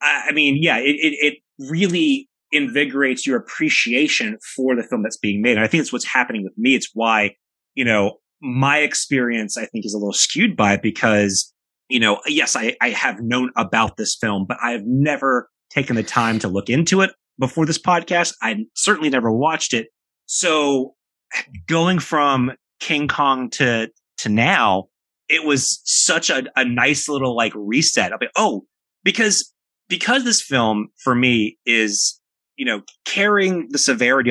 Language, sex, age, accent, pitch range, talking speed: English, male, 30-49, American, 110-165 Hz, 175 wpm